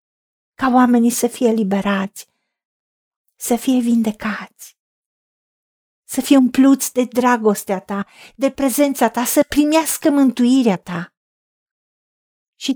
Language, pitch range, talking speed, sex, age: Romanian, 215-275 Hz, 105 wpm, female, 50-69